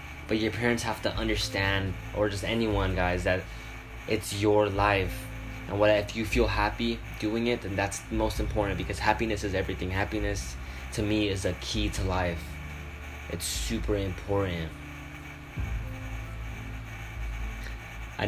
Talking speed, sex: 140 wpm, male